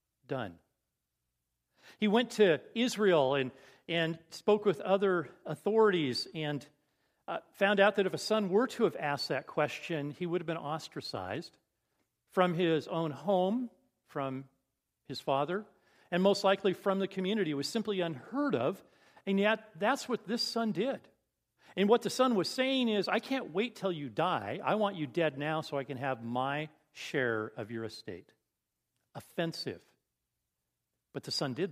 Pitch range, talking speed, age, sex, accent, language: 145-205 Hz, 165 wpm, 50-69, male, American, English